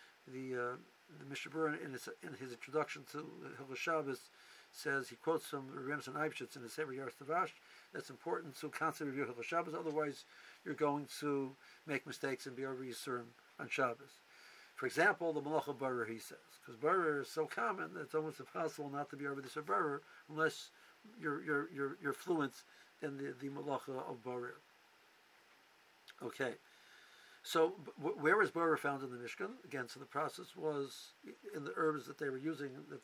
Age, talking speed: 60-79, 175 wpm